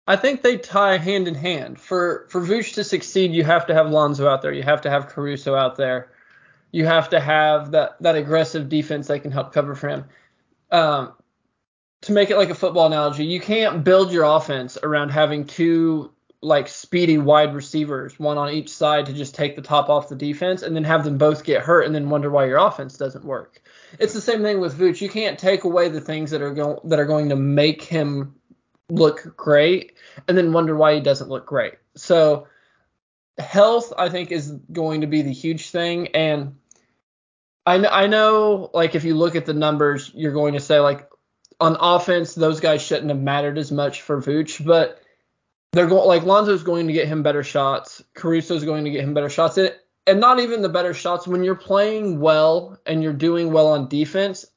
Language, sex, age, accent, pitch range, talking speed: English, male, 20-39, American, 145-180 Hz, 210 wpm